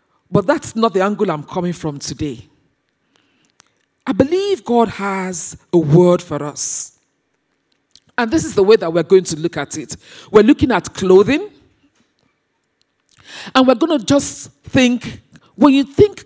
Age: 40-59